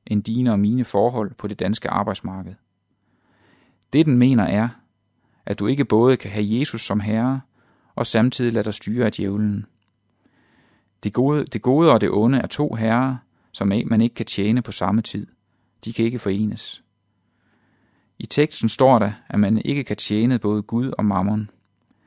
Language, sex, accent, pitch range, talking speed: Danish, male, native, 105-120 Hz, 170 wpm